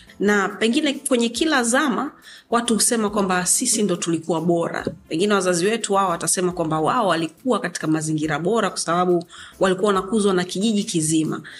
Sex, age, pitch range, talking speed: female, 30-49, 170-220 Hz, 155 wpm